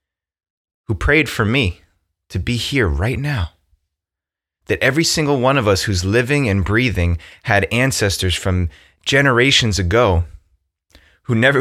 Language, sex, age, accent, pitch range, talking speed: English, male, 20-39, American, 85-115 Hz, 135 wpm